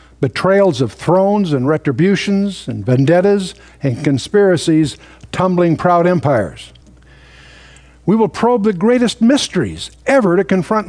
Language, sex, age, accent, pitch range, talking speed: English, male, 60-79, American, 130-205 Hz, 115 wpm